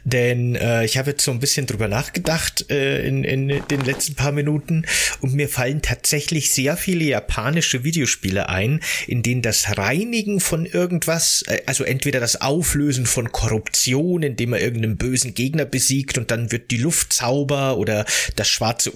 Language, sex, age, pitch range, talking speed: German, male, 30-49, 115-145 Hz, 170 wpm